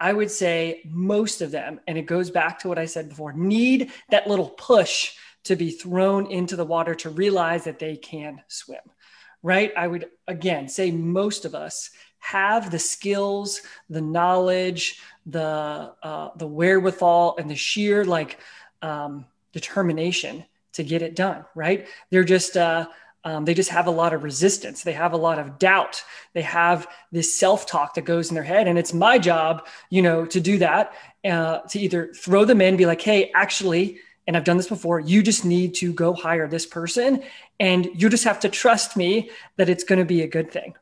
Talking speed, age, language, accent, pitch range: 195 wpm, 30-49, English, American, 165-200 Hz